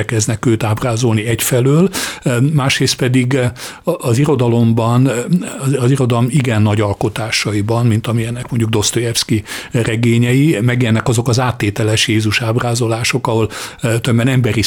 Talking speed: 105 wpm